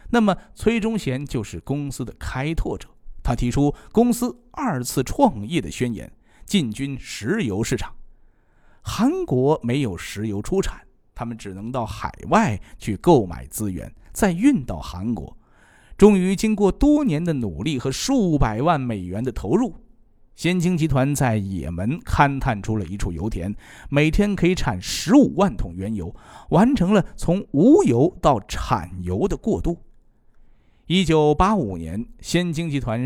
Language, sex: Chinese, male